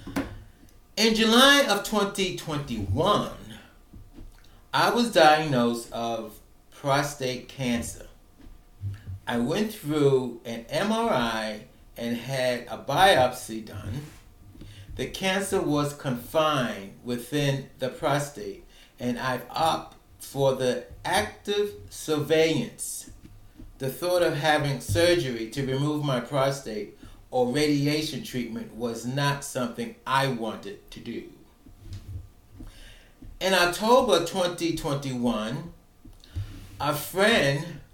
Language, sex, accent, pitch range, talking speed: English, male, American, 115-155 Hz, 90 wpm